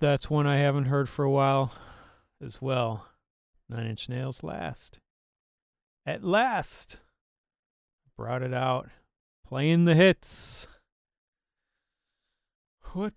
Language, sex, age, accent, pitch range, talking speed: English, male, 30-49, American, 120-165 Hz, 105 wpm